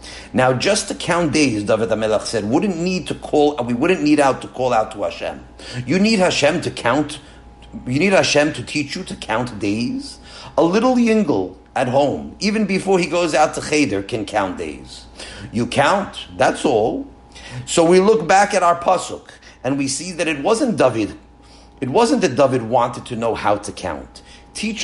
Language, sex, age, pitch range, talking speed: English, male, 50-69, 130-175 Hz, 190 wpm